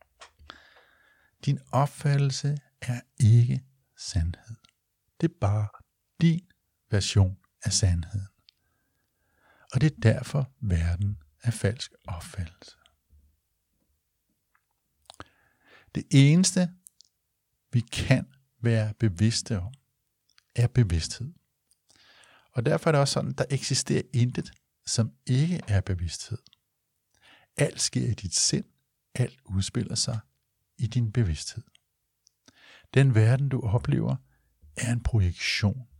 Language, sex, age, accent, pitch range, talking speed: Danish, male, 60-79, native, 90-125 Hz, 100 wpm